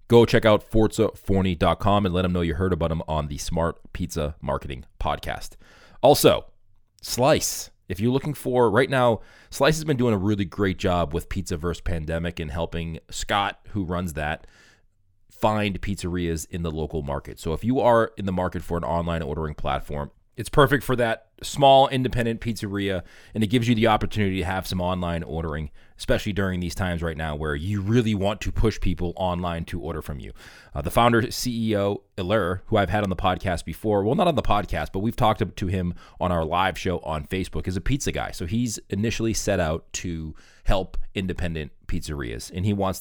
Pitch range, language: 85-110 Hz, English